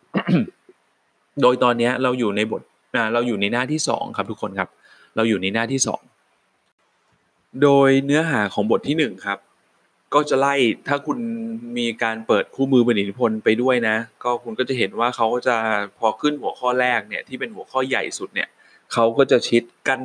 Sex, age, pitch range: male, 20-39, 110-140 Hz